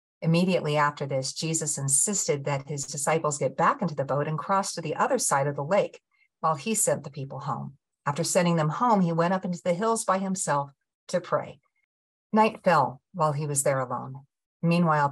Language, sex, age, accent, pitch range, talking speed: English, female, 50-69, American, 140-185 Hz, 200 wpm